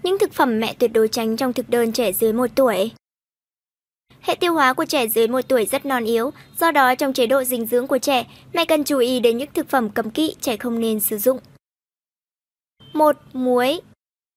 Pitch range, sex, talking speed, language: 240-300 Hz, male, 215 wpm, Vietnamese